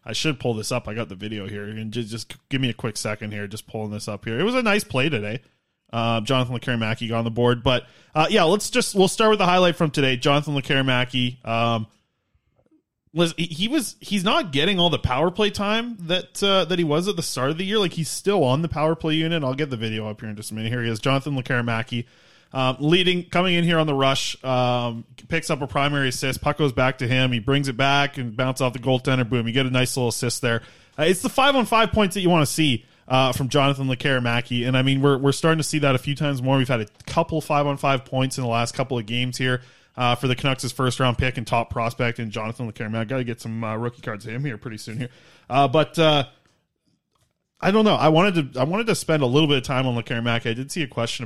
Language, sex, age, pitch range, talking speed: English, male, 20-39, 120-155 Hz, 265 wpm